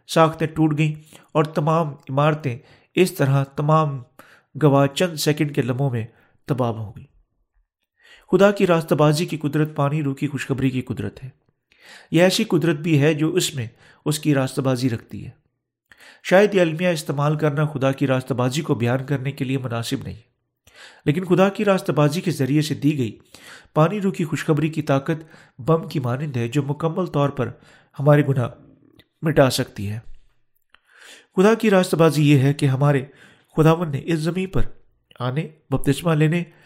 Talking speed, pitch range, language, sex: 165 wpm, 135-160 Hz, Urdu, male